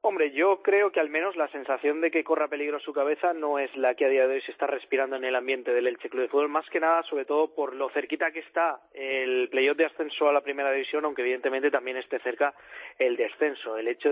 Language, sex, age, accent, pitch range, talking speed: Spanish, male, 20-39, Spanish, 130-150 Hz, 255 wpm